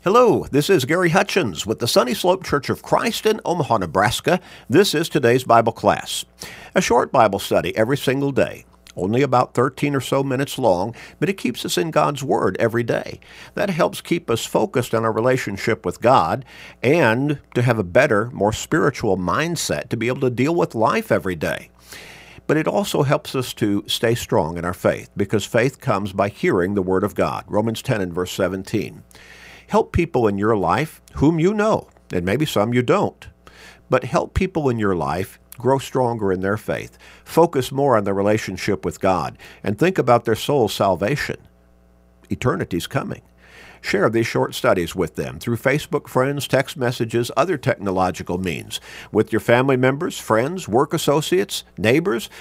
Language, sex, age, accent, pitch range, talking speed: English, male, 50-69, American, 100-140 Hz, 180 wpm